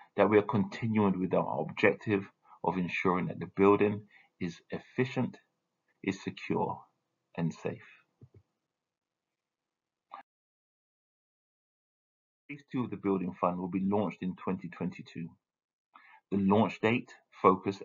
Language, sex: English, male